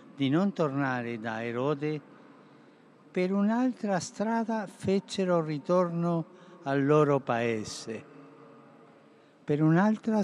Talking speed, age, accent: 90 wpm, 60-79, native